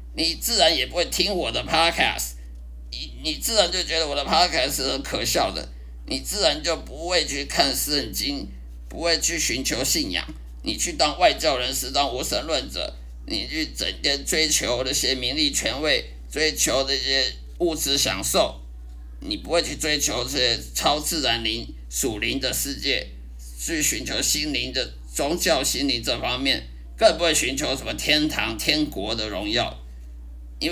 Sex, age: male, 50-69